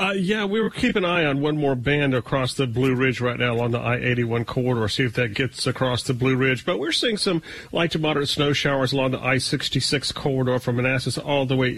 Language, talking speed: English, 240 wpm